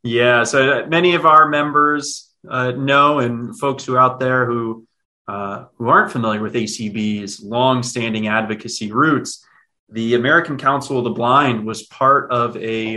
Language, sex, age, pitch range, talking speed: English, male, 30-49, 115-135 Hz, 155 wpm